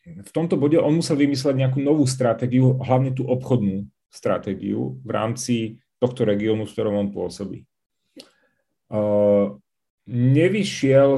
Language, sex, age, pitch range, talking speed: Czech, male, 40-59, 110-135 Hz, 120 wpm